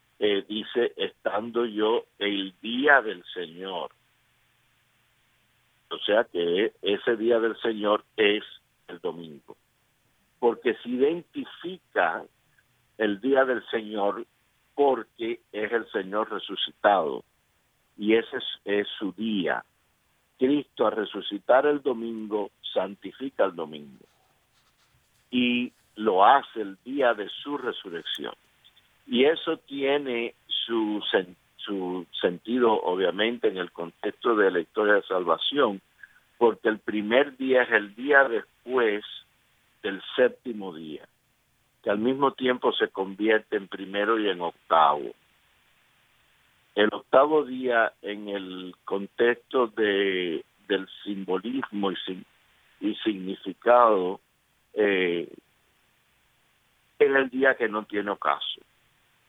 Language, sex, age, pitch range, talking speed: Spanish, male, 60-79, 100-135 Hz, 110 wpm